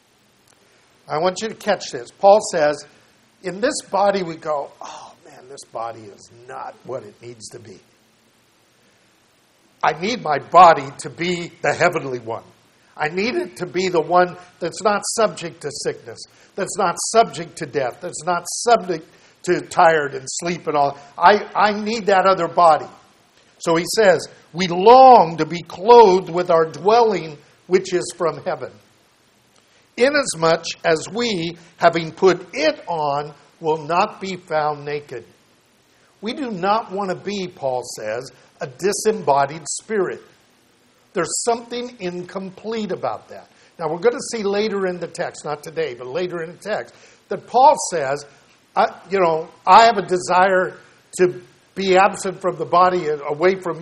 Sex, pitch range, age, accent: male, 165-205 Hz, 50-69, American